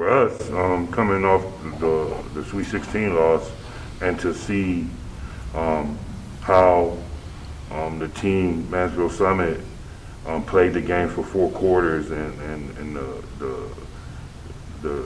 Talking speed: 130 wpm